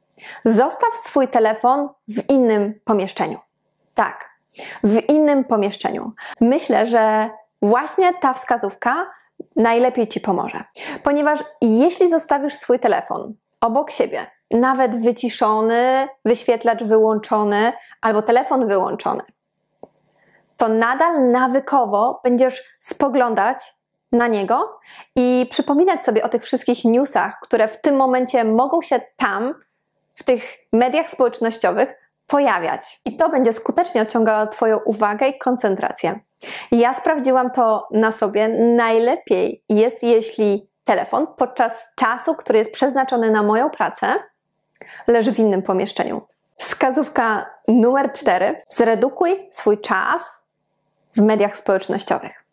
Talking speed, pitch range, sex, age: 110 wpm, 220-265 Hz, female, 20-39